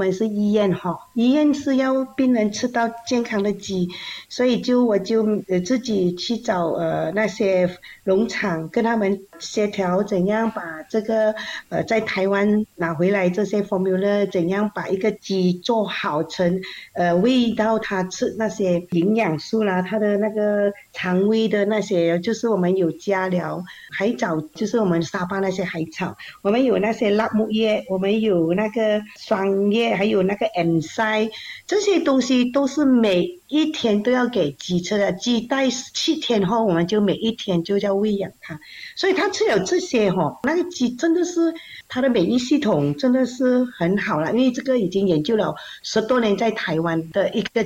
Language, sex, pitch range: Chinese, female, 185-235 Hz